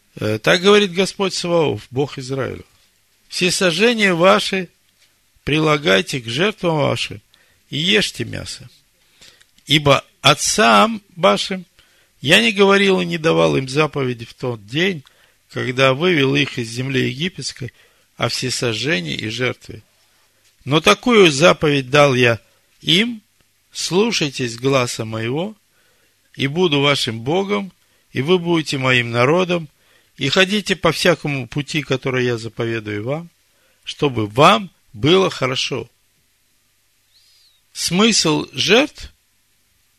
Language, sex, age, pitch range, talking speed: Russian, male, 50-69, 115-170 Hz, 110 wpm